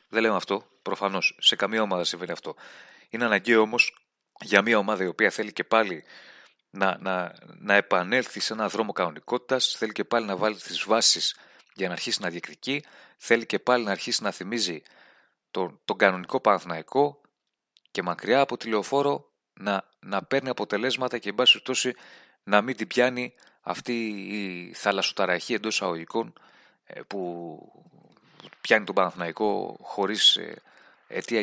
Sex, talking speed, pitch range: male, 145 wpm, 100-125 Hz